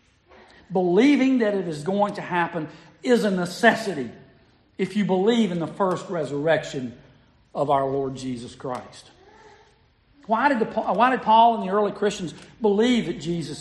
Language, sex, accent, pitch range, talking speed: English, male, American, 155-225 Hz, 145 wpm